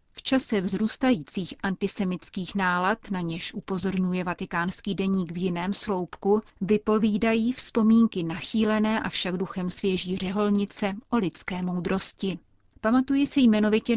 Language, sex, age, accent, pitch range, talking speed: Czech, female, 30-49, native, 185-215 Hz, 115 wpm